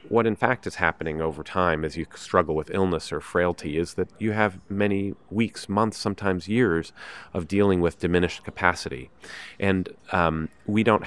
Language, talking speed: English, 175 wpm